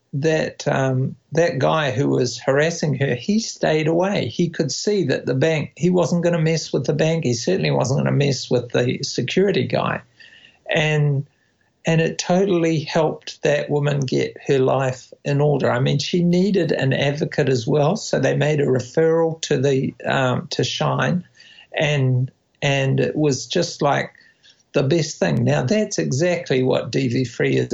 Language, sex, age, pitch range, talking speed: English, male, 50-69, 135-170 Hz, 170 wpm